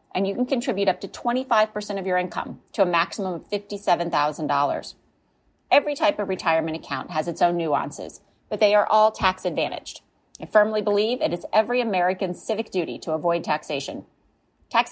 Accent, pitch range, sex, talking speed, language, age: American, 170-230 Hz, female, 170 wpm, English, 30-49